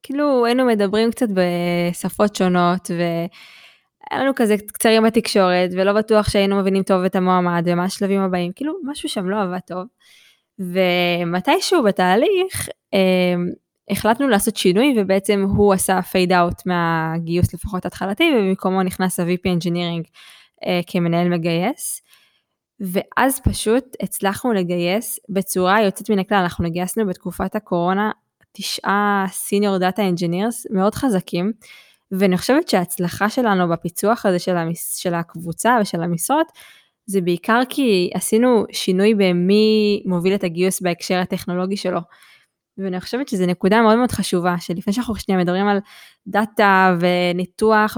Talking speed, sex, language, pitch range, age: 130 wpm, female, Hebrew, 180-215 Hz, 20-39